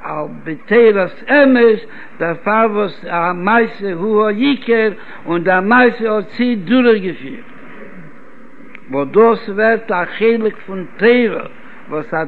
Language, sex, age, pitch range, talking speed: Hebrew, male, 60-79, 185-235 Hz, 110 wpm